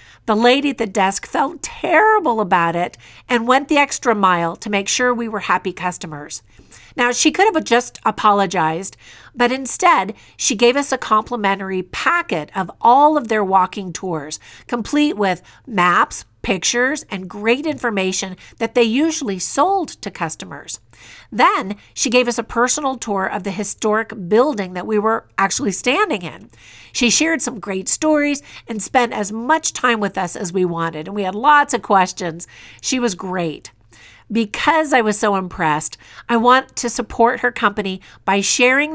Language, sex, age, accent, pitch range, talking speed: English, female, 50-69, American, 190-255 Hz, 165 wpm